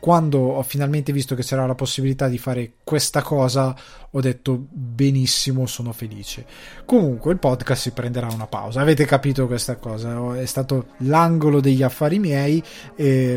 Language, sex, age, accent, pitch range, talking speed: Italian, male, 20-39, native, 130-150 Hz, 155 wpm